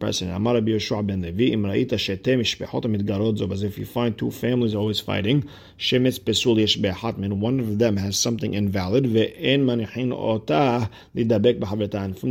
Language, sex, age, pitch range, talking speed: English, male, 50-69, 105-120 Hz, 75 wpm